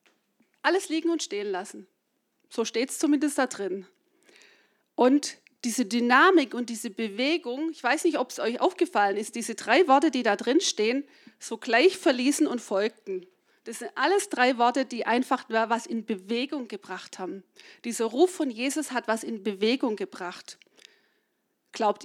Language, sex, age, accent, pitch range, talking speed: German, female, 40-59, German, 220-310 Hz, 160 wpm